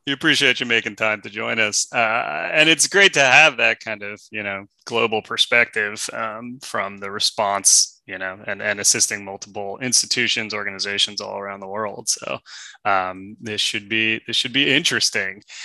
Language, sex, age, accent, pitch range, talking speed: English, male, 20-39, American, 100-125 Hz, 175 wpm